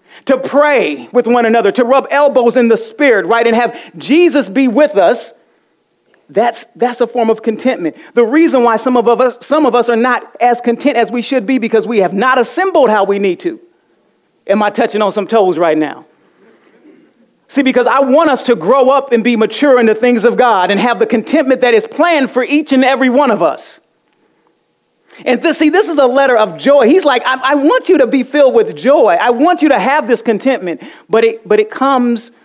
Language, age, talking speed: English, 40-59, 220 wpm